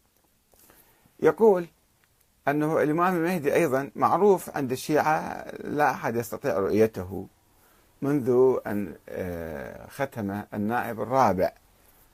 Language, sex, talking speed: Arabic, male, 85 wpm